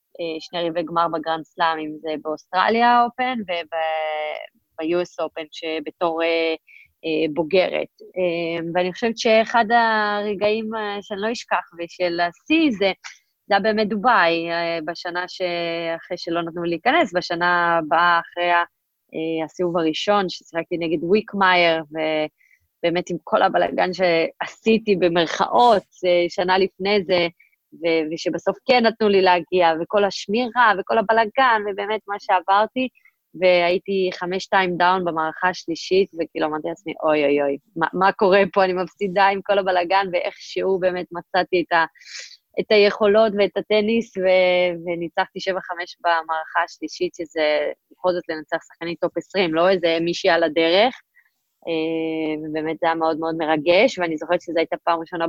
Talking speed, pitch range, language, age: 135 wpm, 165-195 Hz, Hebrew, 20-39